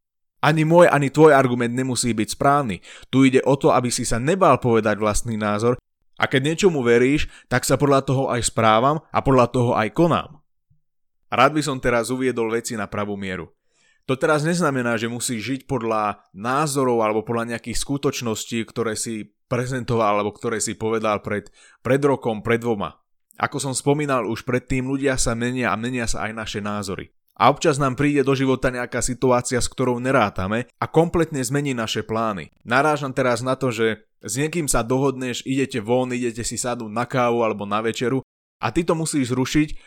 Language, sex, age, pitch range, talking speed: Slovak, male, 20-39, 110-135 Hz, 180 wpm